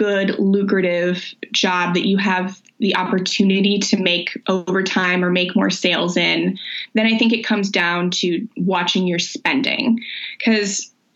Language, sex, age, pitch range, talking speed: English, female, 20-39, 185-230 Hz, 150 wpm